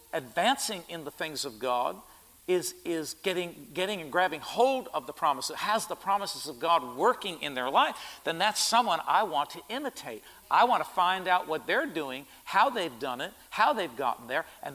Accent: American